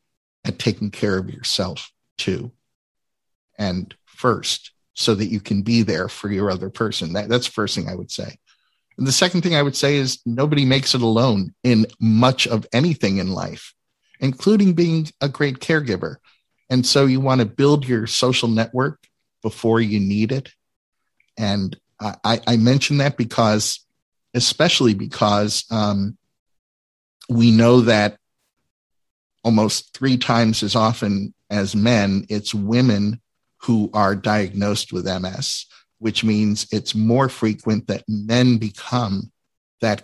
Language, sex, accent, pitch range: English, male, American, 105-125 Hz